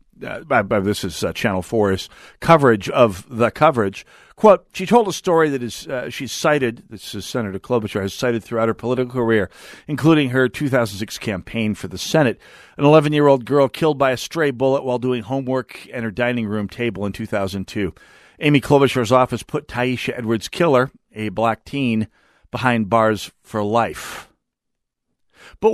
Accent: American